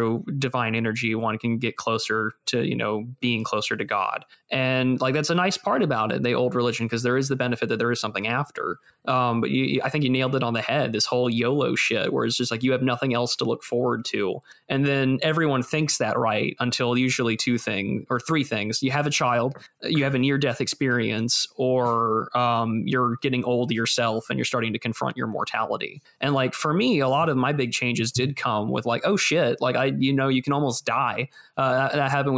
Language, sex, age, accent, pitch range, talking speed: English, male, 20-39, American, 115-140 Hz, 230 wpm